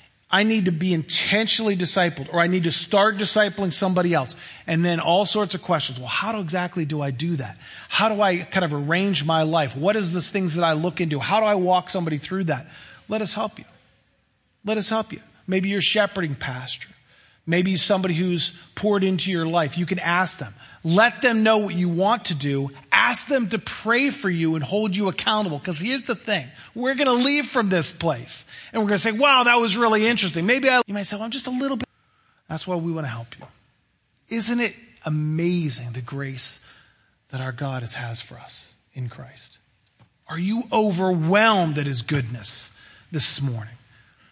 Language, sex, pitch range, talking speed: English, male, 135-200 Hz, 205 wpm